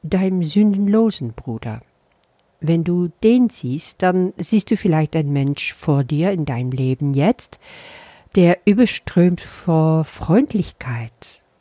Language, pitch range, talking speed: German, 140-190 Hz, 120 wpm